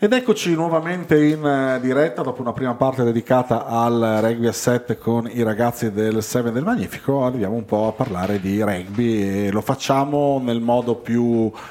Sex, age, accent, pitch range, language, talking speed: male, 40-59, native, 105-130 Hz, Italian, 170 wpm